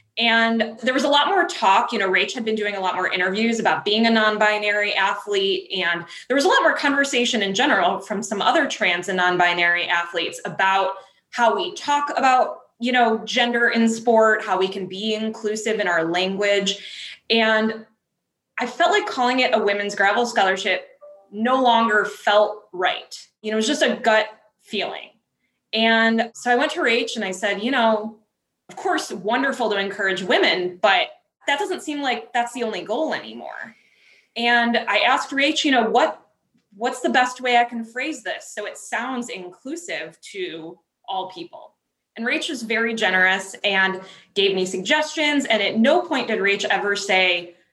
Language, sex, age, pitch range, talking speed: English, female, 20-39, 195-250 Hz, 180 wpm